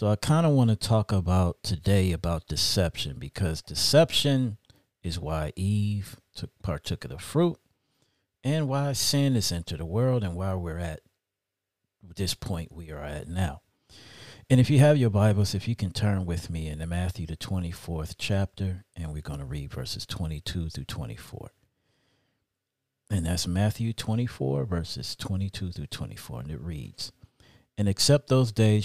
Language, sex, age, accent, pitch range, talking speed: English, male, 50-69, American, 90-120 Hz, 165 wpm